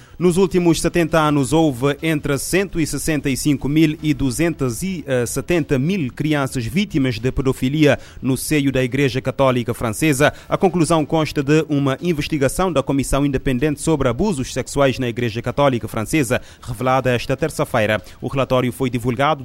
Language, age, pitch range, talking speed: Portuguese, 30-49, 120-145 Hz, 135 wpm